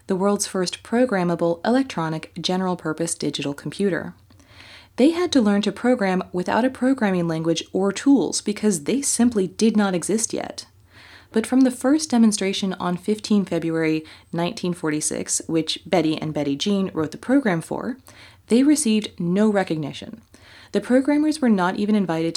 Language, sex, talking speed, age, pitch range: English, female, 150 wpm, 20-39, 160-220 Hz